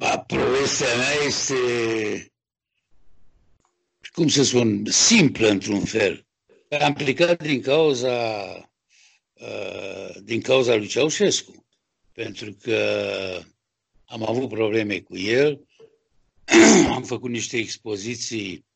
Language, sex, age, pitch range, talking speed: Romanian, male, 60-79, 105-135 Hz, 90 wpm